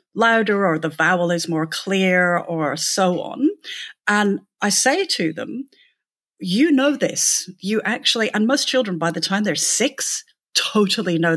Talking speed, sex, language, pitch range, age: 160 wpm, female, English, 175-255 Hz, 50-69